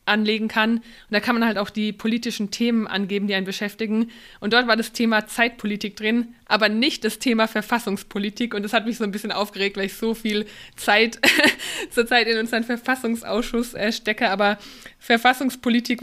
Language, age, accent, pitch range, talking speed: German, 20-39, German, 210-245 Hz, 180 wpm